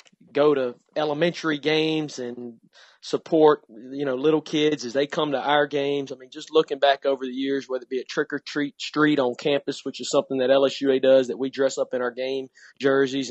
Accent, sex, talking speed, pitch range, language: American, male, 205 wpm, 125-145 Hz, English